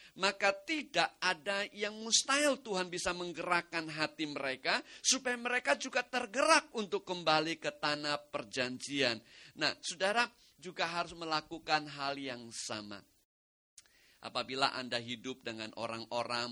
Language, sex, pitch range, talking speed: English, male, 125-200 Hz, 115 wpm